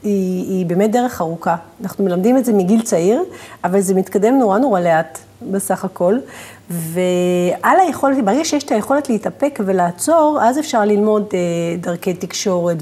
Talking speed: 155 wpm